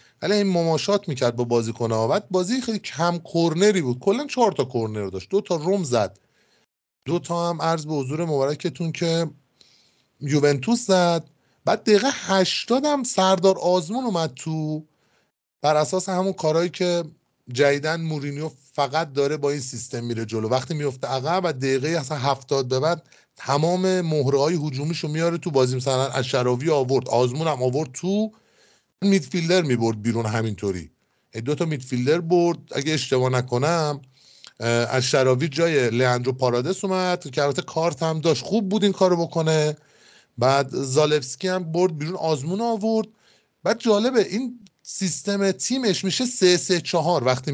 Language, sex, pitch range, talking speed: Persian, male, 135-185 Hz, 145 wpm